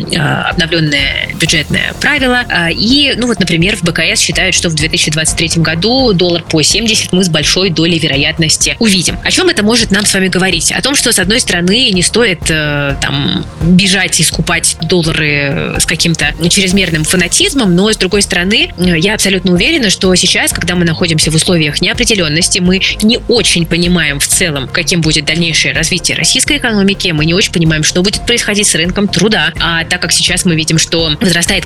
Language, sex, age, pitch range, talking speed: Russian, female, 20-39, 160-200 Hz, 175 wpm